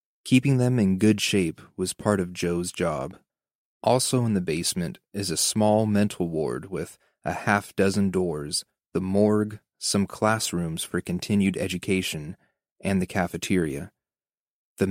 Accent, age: American, 30-49